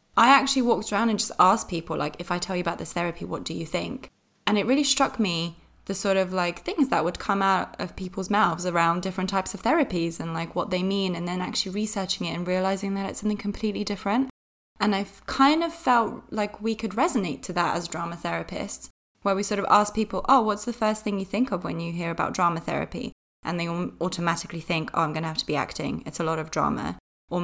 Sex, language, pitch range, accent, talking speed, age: female, English, 175-220 Hz, British, 245 wpm, 20-39